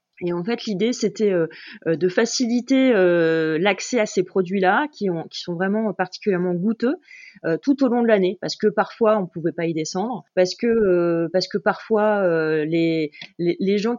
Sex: female